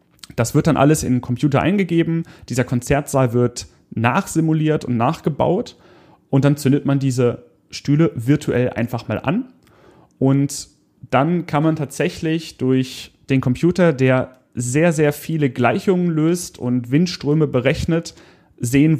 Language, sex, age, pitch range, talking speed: German, male, 30-49, 120-150 Hz, 135 wpm